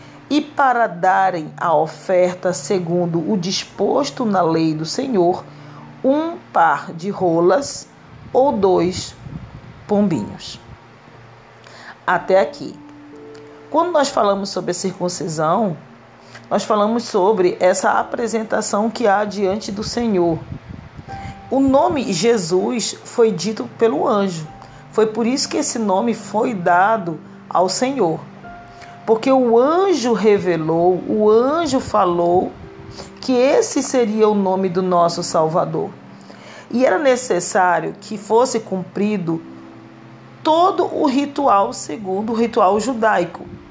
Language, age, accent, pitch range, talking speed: Portuguese, 40-59, Brazilian, 175-250 Hz, 115 wpm